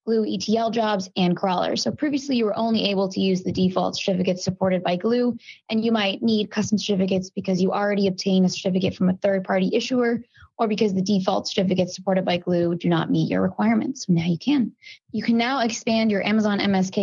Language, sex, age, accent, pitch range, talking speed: English, female, 20-39, American, 185-220 Hz, 205 wpm